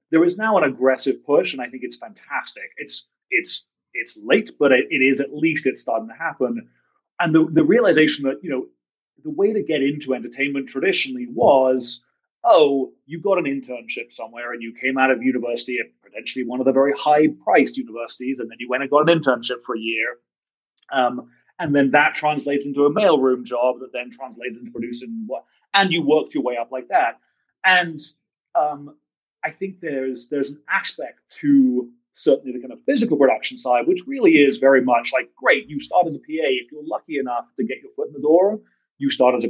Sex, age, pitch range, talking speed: male, 30-49, 125-175 Hz, 210 wpm